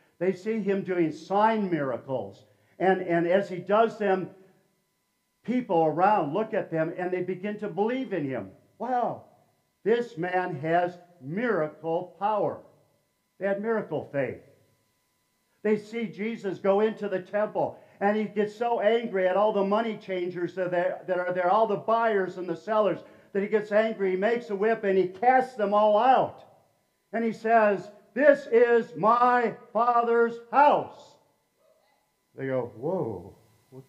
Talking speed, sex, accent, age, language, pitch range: 155 wpm, male, American, 50-69, English, 160-215 Hz